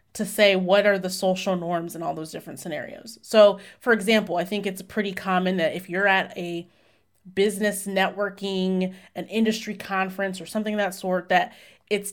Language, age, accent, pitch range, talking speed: English, 30-49, American, 180-220 Hz, 185 wpm